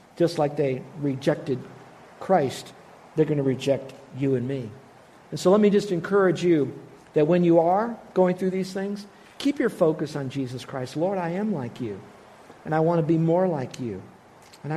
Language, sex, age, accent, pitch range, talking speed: English, male, 60-79, American, 140-175 Hz, 190 wpm